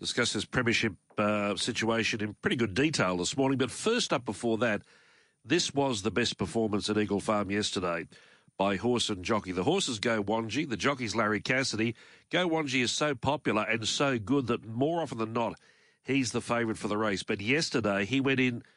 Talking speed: 190 wpm